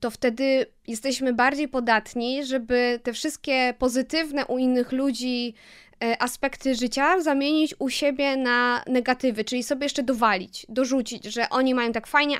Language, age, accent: Polish, 20-39, native